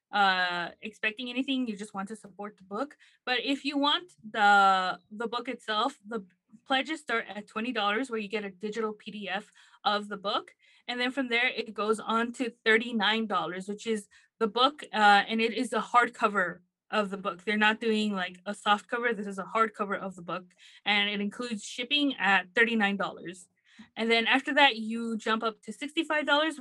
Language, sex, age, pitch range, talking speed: English, female, 20-39, 205-250 Hz, 185 wpm